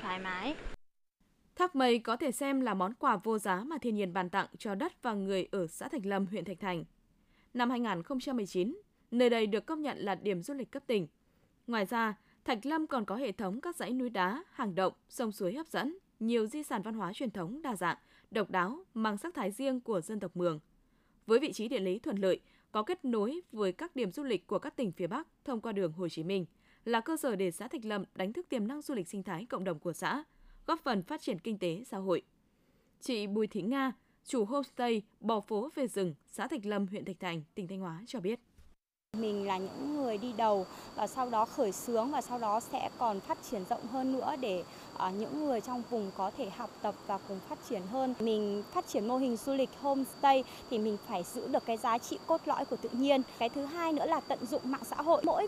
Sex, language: female, Vietnamese